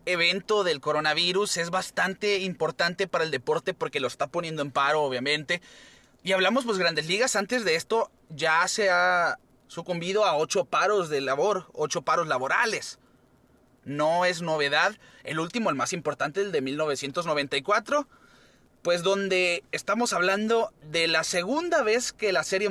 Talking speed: 155 wpm